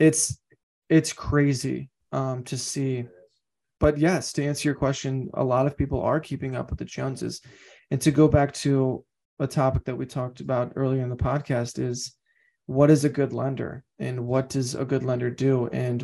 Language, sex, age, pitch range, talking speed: English, male, 20-39, 125-140 Hz, 190 wpm